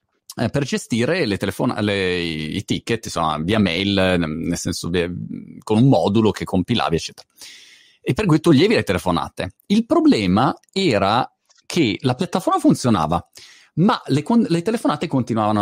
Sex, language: male, Italian